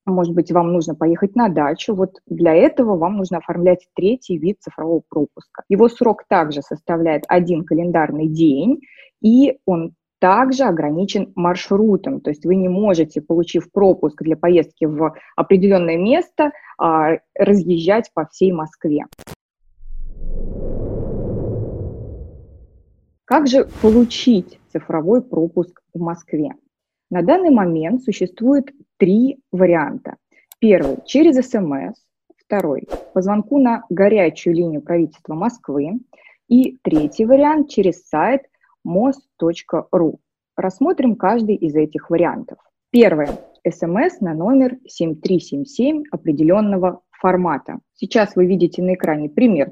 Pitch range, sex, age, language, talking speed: 165-240 Hz, female, 20-39, Russian, 110 wpm